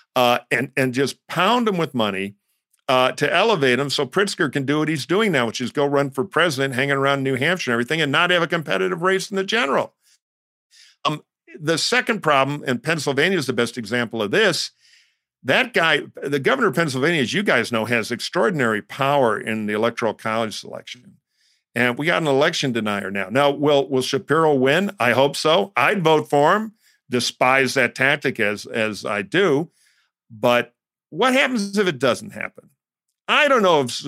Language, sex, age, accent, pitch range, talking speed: English, male, 50-69, American, 125-160 Hz, 190 wpm